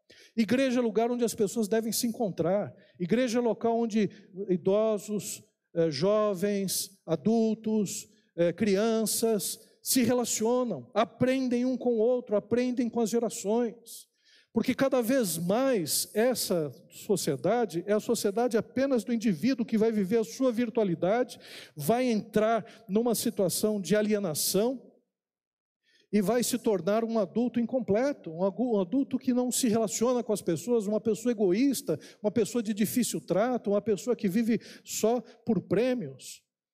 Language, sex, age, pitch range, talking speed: Portuguese, male, 60-79, 200-235 Hz, 140 wpm